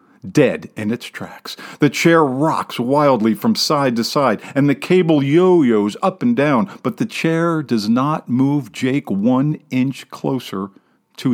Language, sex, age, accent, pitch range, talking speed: English, male, 50-69, American, 130-175 Hz, 160 wpm